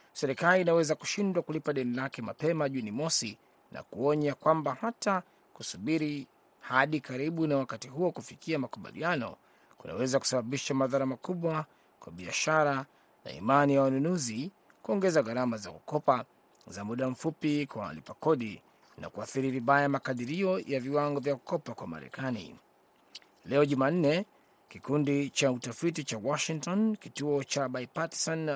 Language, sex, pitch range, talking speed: Swahili, male, 130-160 Hz, 130 wpm